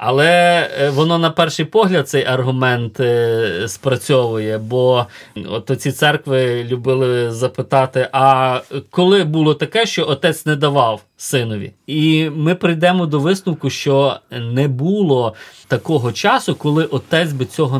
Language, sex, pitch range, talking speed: Ukrainian, male, 125-155 Hz, 125 wpm